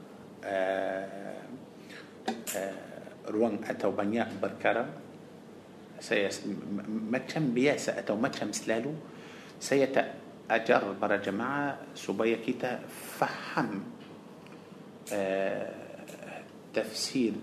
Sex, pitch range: male, 105-130 Hz